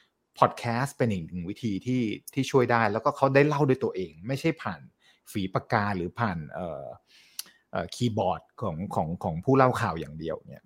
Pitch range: 115-155 Hz